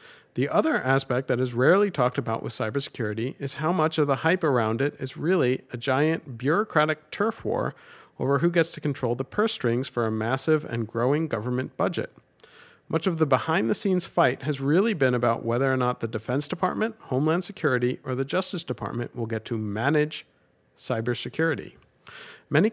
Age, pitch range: 50-69, 120-155 Hz